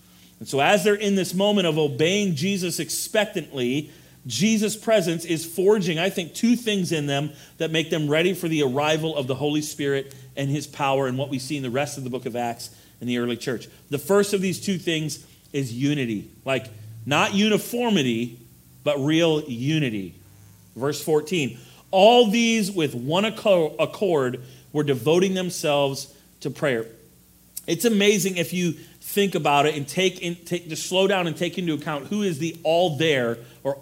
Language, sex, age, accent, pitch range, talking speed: English, male, 40-59, American, 135-190 Hz, 180 wpm